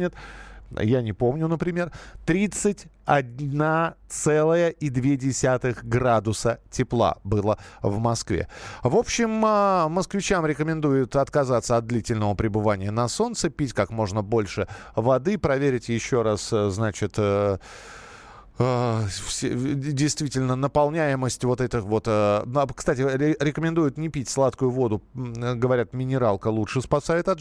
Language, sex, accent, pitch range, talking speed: Russian, male, native, 115-150 Hz, 100 wpm